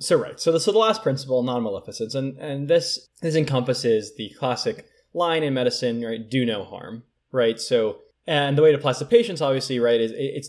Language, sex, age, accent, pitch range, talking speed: English, male, 20-39, American, 115-155 Hz, 210 wpm